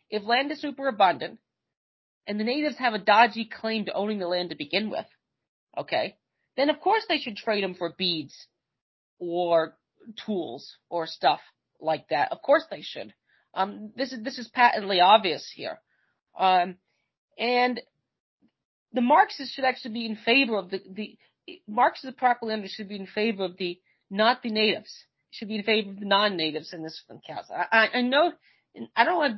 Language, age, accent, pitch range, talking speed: English, 40-59, American, 195-275 Hz, 185 wpm